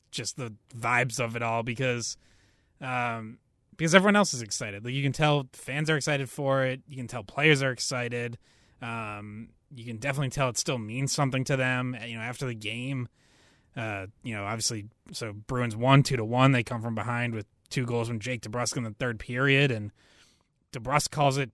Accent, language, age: American, English, 20-39